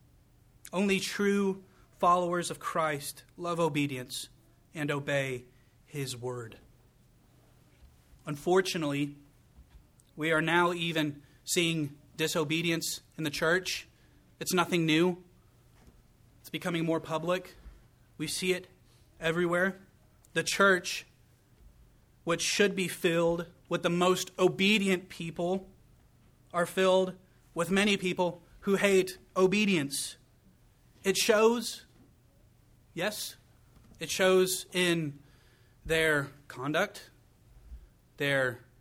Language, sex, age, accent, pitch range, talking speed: English, male, 30-49, American, 125-180 Hz, 95 wpm